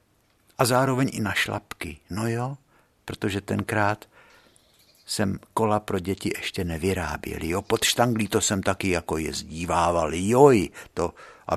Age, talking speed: 60-79, 135 wpm